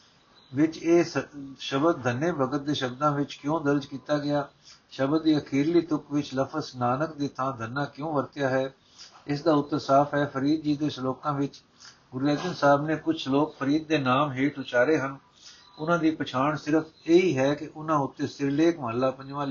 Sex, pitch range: male, 130-155 Hz